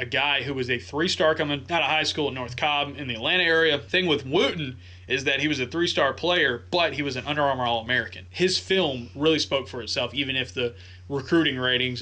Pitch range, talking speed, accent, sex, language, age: 115-140 Hz, 245 wpm, American, male, English, 20-39